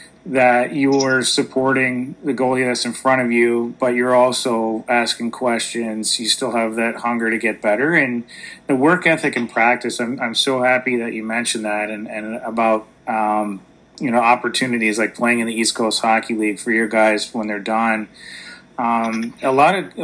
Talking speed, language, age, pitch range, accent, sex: 185 wpm, English, 30-49, 115-130 Hz, American, male